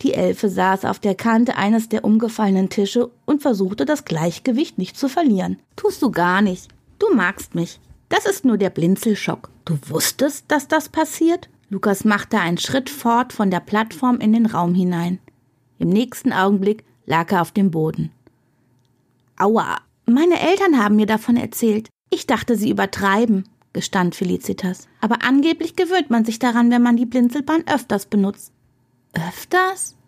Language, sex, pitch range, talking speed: German, female, 180-255 Hz, 160 wpm